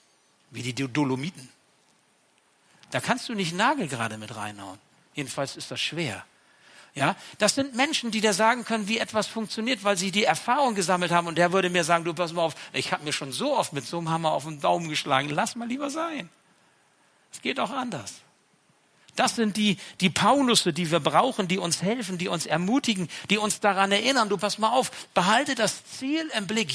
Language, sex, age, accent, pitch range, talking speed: German, male, 60-79, German, 170-240 Hz, 200 wpm